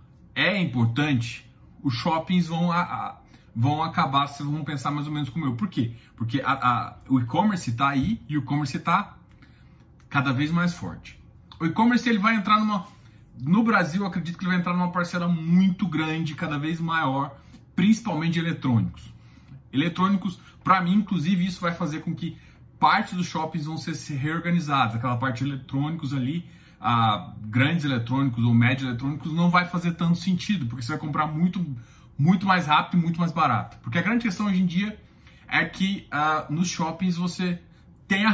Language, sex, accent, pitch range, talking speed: English, male, Brazilian, 140-185 Hz, 180 wpm